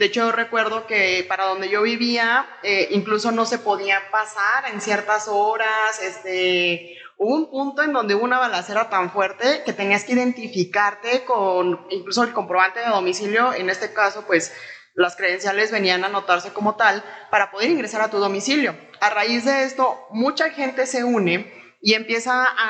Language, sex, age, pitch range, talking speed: Spanish, female, 20-39, 200-250 Hz, 175 wpm